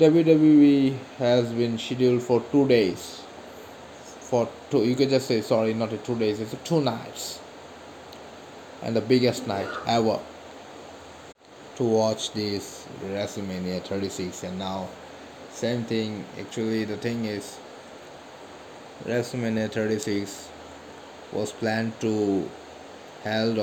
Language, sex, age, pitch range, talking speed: English, male, 20-39, 100-115 Hz, 115 wpm